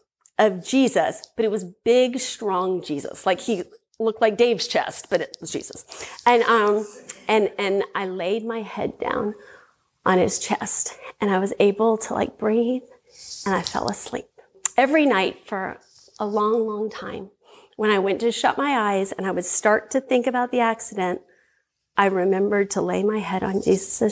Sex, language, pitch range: female, English, 205-250 Hz